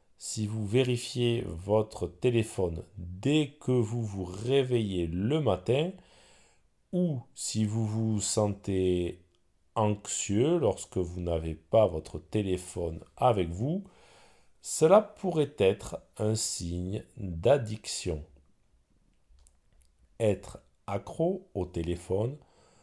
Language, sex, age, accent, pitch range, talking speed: French, male, 40-59, French, 90-125 Hz, 95 wpm